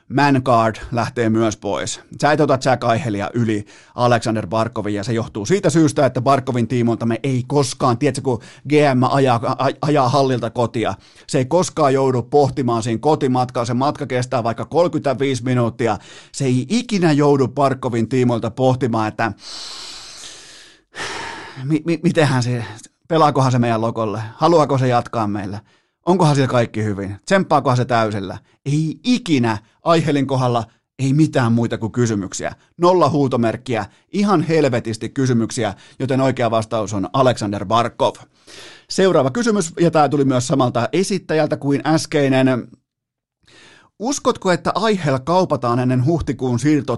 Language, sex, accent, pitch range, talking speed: Finnish, male, native, 115-150 Hz, 135 wpm